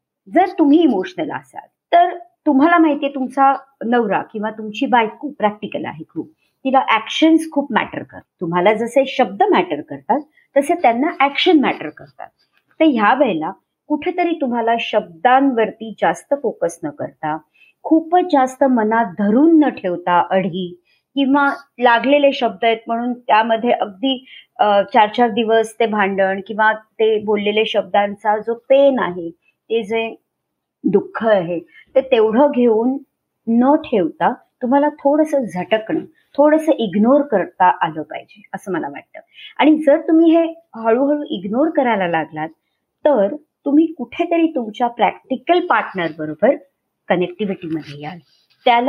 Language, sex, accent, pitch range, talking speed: Marathi, male, native, 215-295 Hz, 65 wpm